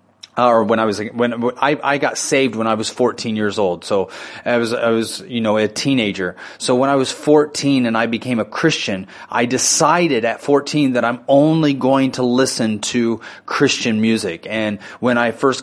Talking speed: 200 wpm